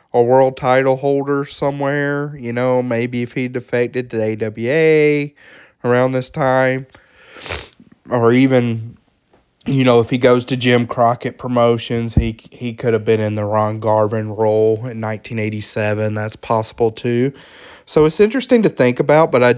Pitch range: 115-135 Hz